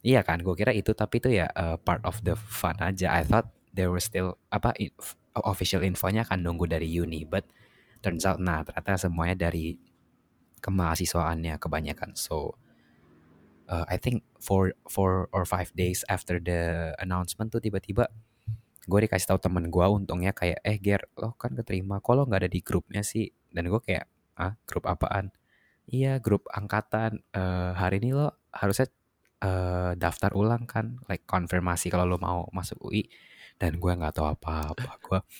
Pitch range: 85-105 Hz